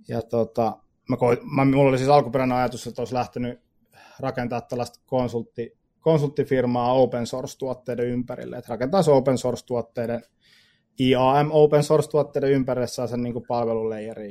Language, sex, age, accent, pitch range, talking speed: Finnish, male, 20-39, native, 115-130 Hz, 120 wpm